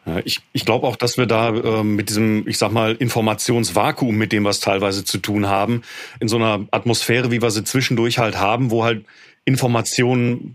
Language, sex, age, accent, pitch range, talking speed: German, male, 40-59, German, 110-130 Hz, 195 wpm